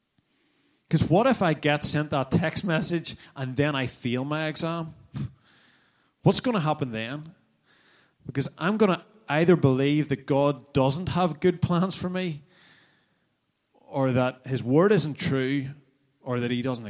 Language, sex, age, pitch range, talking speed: English, male, 30-49, 125-160 Hz, 155 wpm